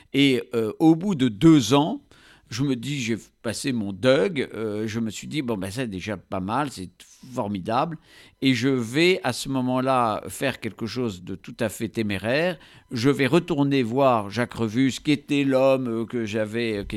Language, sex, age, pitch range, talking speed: French, male, 50-69, 105-135 Hz, 185 wpm